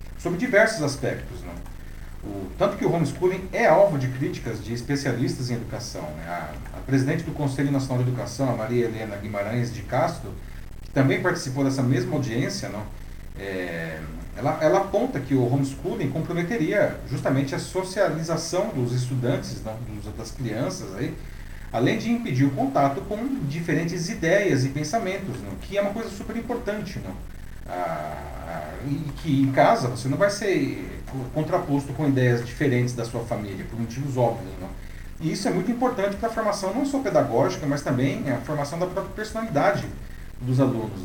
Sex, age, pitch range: male, 40-59, 115-160 Hz